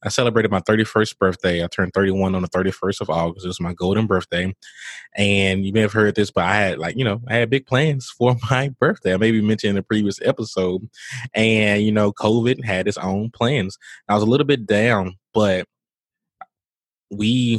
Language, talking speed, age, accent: English, 205 wpm, 20-39, American